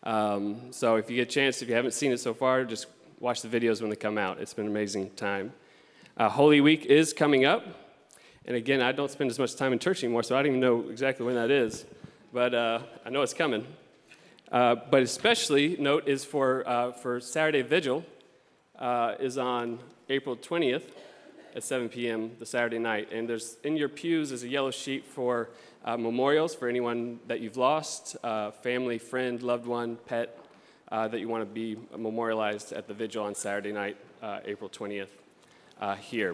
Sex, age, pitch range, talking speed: male, 30-49, 115-135 Hz, 200 wpm